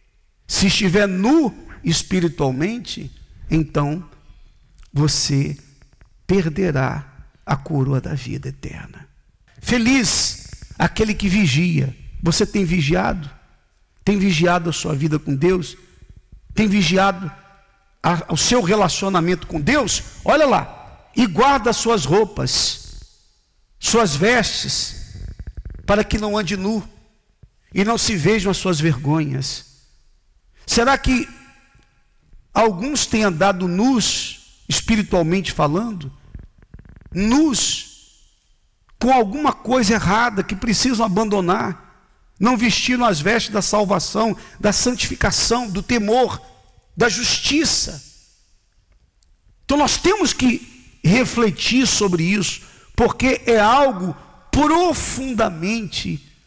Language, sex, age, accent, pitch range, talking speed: Portuguese, male, 50-69, Brazilian, 155-230 Hz, 100 wpm